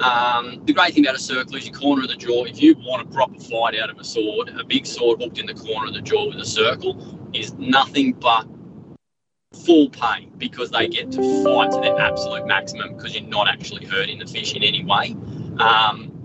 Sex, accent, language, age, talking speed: male, Australian, English, 20-39, 230 wpm